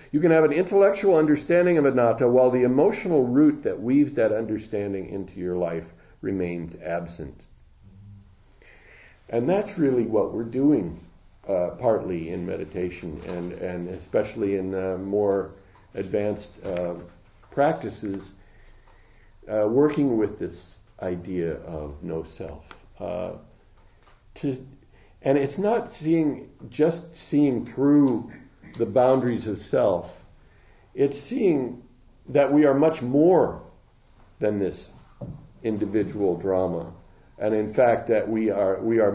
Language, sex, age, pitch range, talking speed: English, male, 50-69, 95-130 Hz, 120 wpm